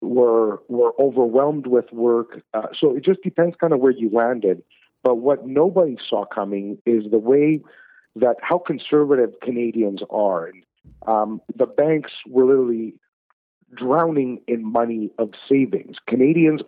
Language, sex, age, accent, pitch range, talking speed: English, male, 50-69, American, 115-140 Hz, 140 wpm